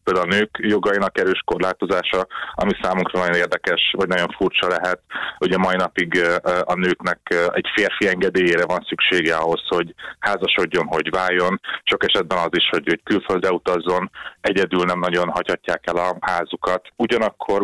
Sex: male